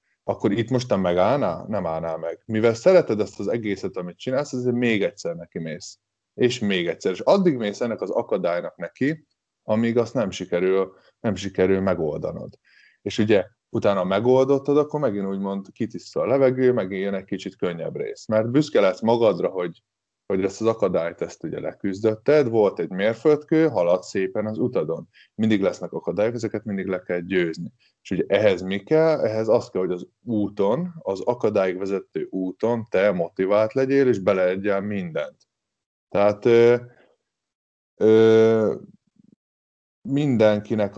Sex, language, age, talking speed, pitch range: male, Hungarian, 20-39, 150 wpm, 95-120 Hz